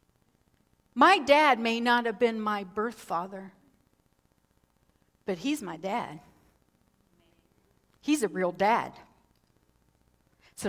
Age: 50-69